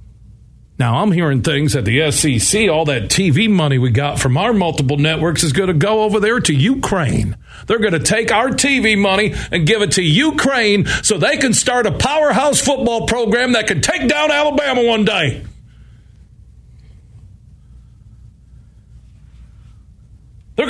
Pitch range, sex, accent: 125-205 Hz, male, American